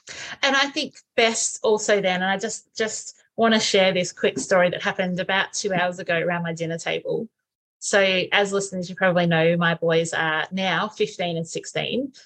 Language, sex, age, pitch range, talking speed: English, female, 30-49, 175-215 Hz, 190 wpm